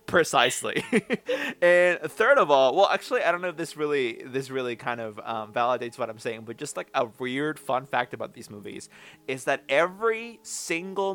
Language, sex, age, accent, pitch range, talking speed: English, male, 20-39, American, 120-170 Hz, 195 wpm